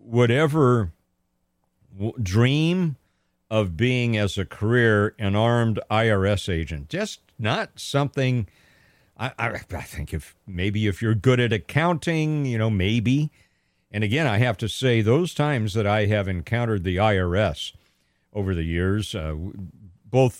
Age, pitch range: 50-69, 100-130 Hz